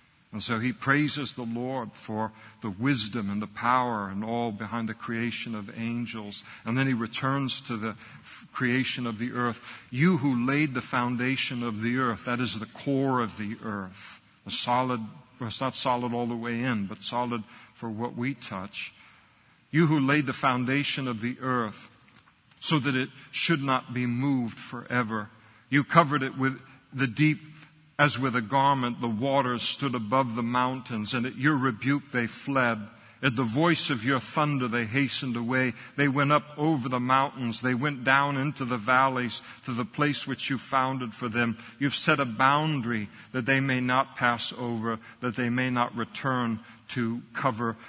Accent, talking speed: American, 180 wpm